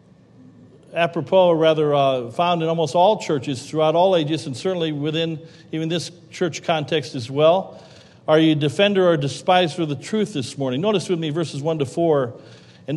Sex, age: male, 50-69